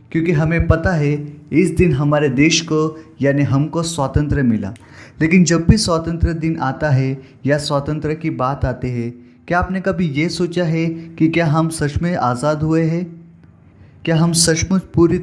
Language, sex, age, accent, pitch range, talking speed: Hindi, male, 20-39, native, 130-170 Hz, 175 wpm